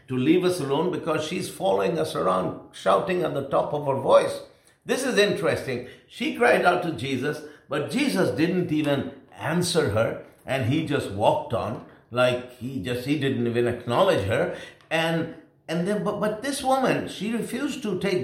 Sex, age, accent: male, 60-79, Indian